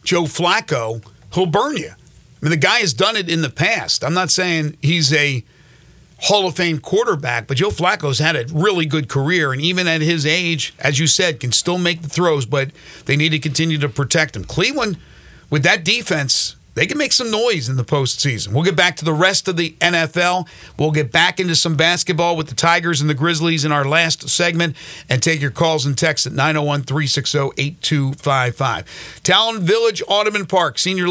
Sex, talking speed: male, 200 wpm